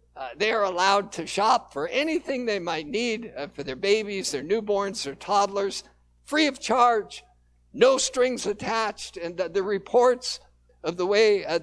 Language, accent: English, American